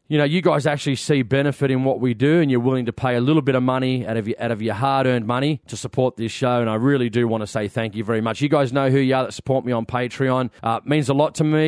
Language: English